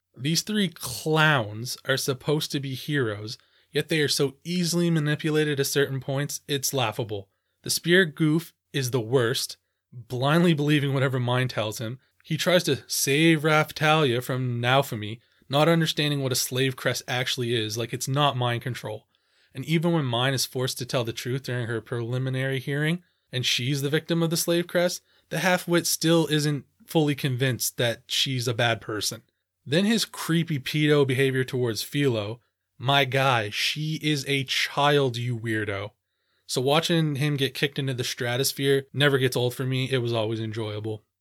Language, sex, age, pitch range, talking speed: English, male, 20-39, 125-150 Hz, 170 wpm